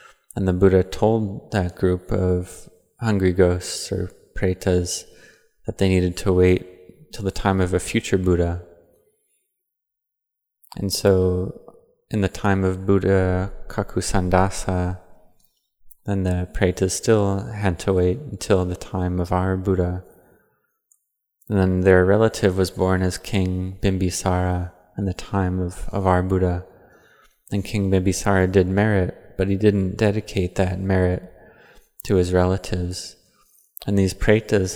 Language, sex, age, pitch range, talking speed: English, male, 20-39, 90-100 Hz, 135 wpm